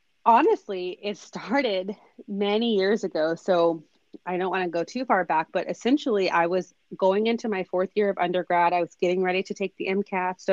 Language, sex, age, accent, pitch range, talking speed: English, female, 30-49, American, 175-210 Hz, 200 wpm